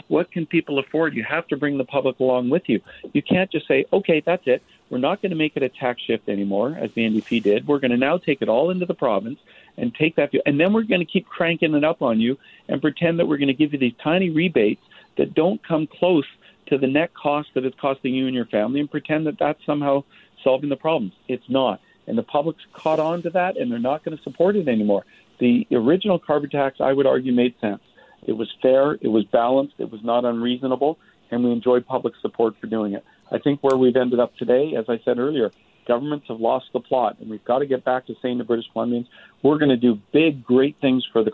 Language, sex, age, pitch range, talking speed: English, male, 50-69, 120-150 Hz, 250 wpm